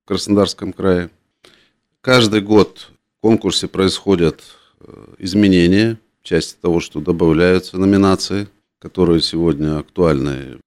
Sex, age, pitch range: male, 40-59, 85-105 Hz